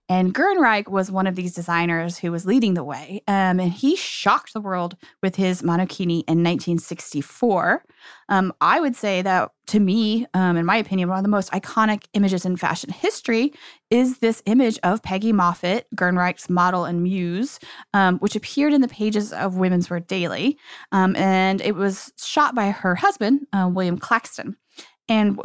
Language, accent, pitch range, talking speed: English, American, 185-245 Hz, 175 wpm